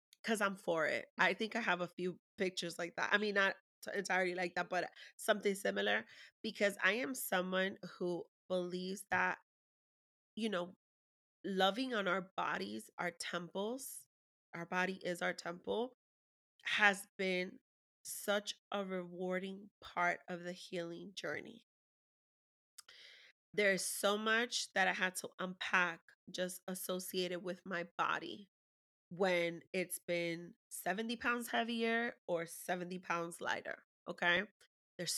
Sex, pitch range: female, 175-205 Hz